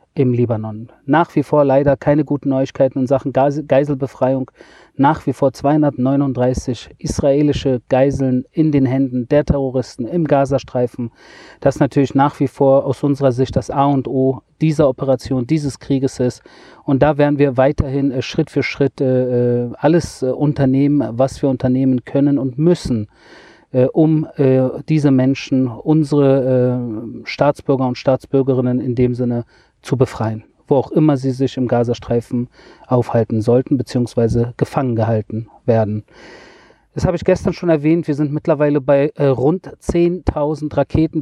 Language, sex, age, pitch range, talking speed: German, male, 40-59, 130-145 Hz, 140 wpm